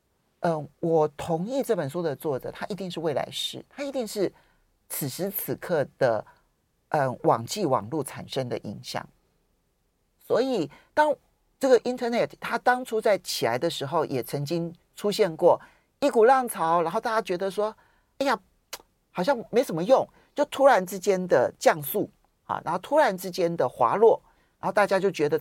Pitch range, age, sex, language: 160-235 Hz, 40-59, male, Chinese